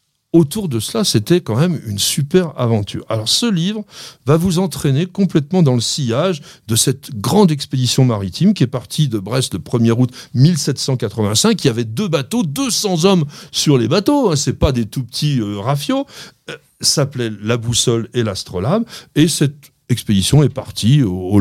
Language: French